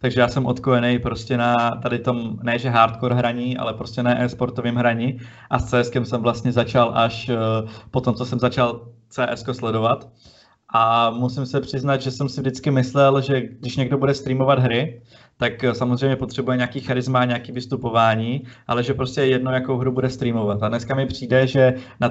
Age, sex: 20-39, male